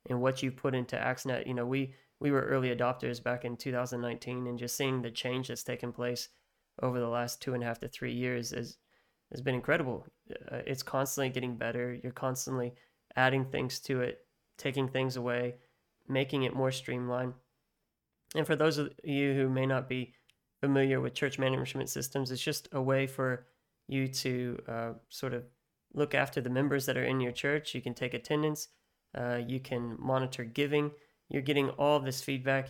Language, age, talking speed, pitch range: English, 20-39, 190 wpm, 125-140 Hz